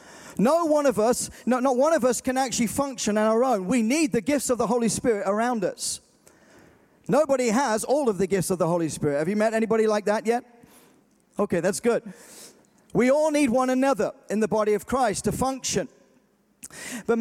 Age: 40-59